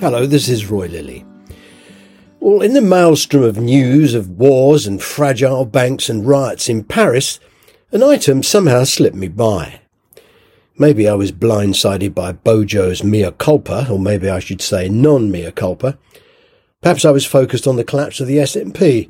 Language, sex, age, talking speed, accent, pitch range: English, male, 50-69, 160 wpm, British, 100-150 Hz